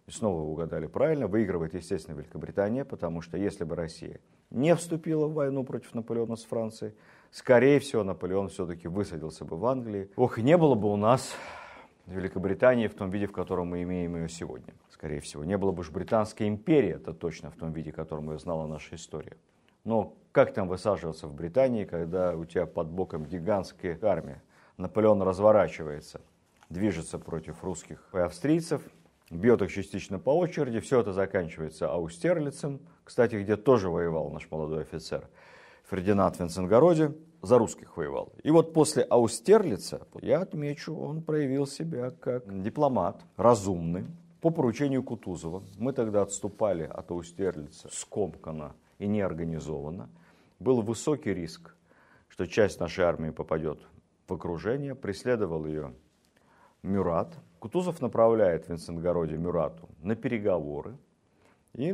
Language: Russian